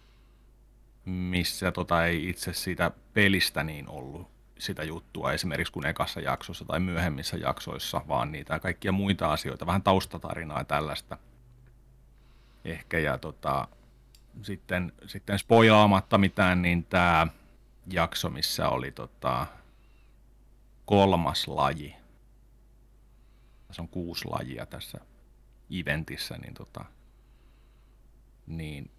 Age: 30-49